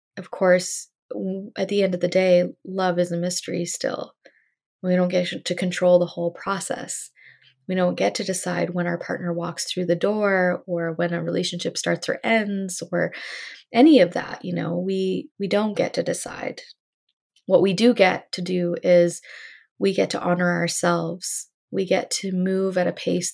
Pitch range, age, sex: 170-185 Hz, 20-39, female